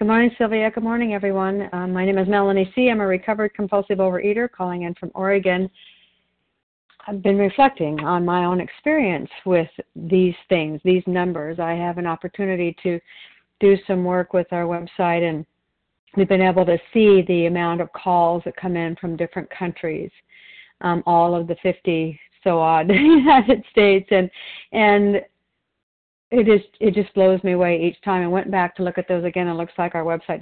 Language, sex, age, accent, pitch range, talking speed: English, female, 50-69, American, 180-240 Hz, 185 wpm